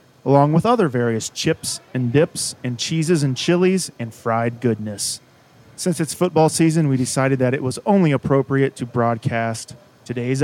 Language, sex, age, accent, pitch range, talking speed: English, male, 30-49, American, 120-155 Hz, 160 wpm